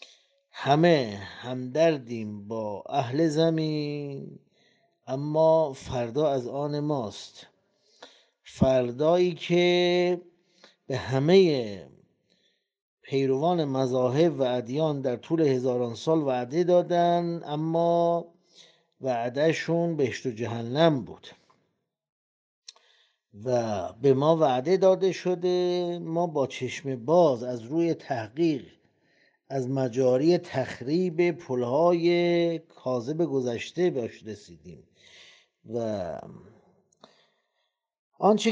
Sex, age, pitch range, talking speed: male, 50-69, 135-175 Hz, 85 wpm